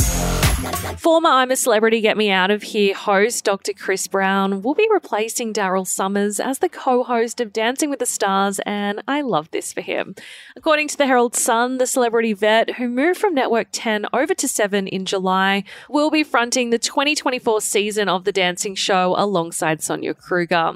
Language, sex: English, female